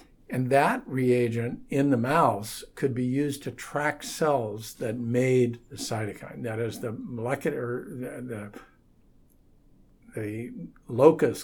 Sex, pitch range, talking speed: male, 110-130 Hz, 125 wpm